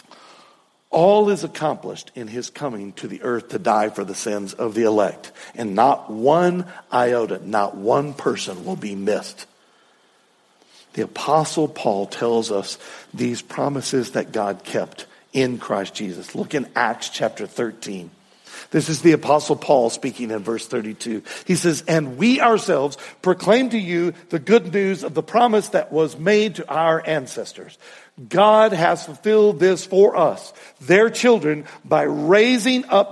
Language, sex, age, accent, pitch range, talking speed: English, male, 60-79, American, 140-210 Hz, 155 wpm